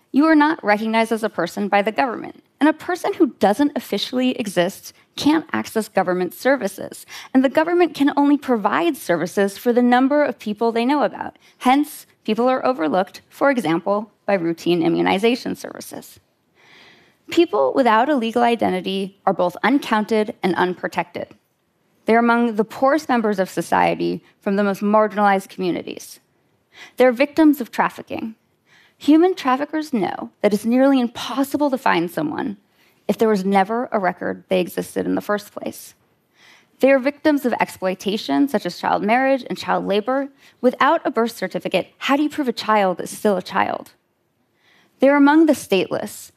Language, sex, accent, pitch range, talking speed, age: Russian, female, American, 195-275 Hz, 160 wpm, 20-39